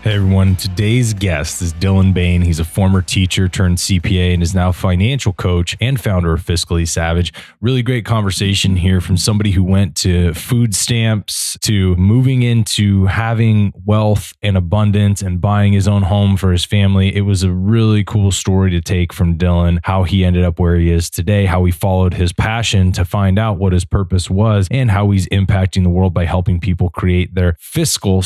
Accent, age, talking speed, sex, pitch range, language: American, 20-39, 195 wpm, male, 90-105 Hz, English